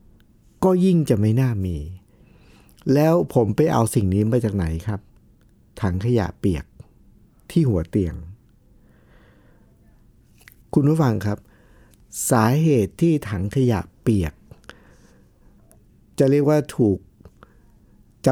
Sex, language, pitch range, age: male, Thai, 100-140 Hz, 60-79